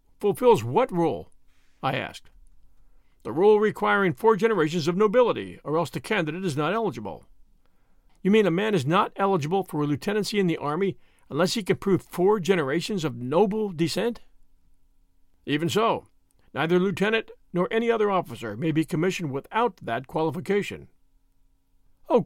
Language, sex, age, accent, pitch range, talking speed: English, male, 50-69, American, 145-215 Hz, 150 wpm